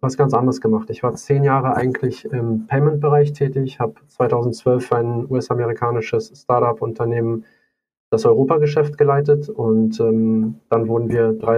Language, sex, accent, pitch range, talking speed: German, male, German, 115-140 Hz, 140 wpm